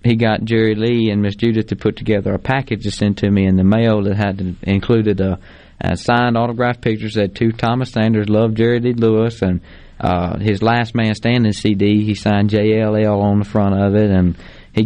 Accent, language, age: American, English, 20-39